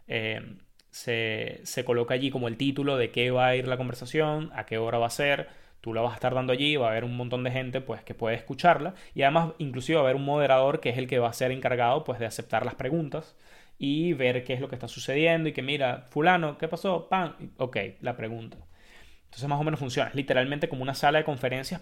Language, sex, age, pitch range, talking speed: Spanish, male, 20-39, 120-145 Hz, 240 wpm